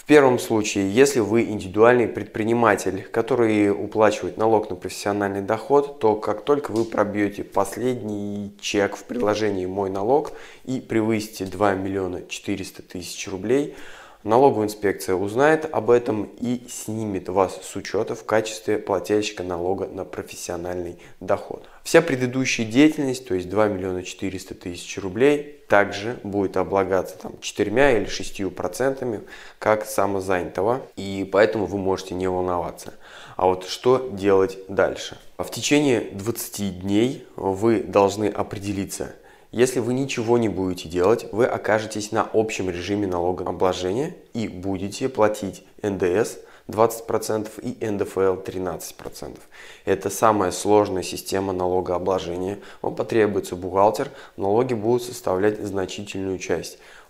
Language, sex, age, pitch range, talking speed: Russian, male, 20-39, 95-115 Hz, 125 wpm